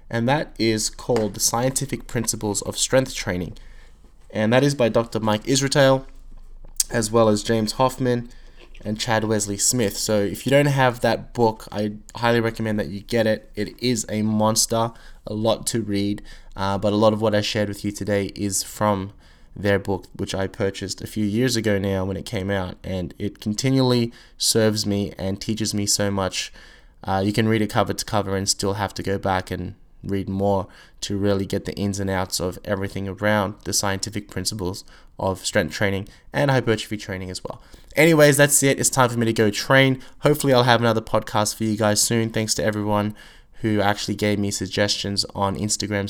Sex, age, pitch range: male, 20-39, 100-115 Hz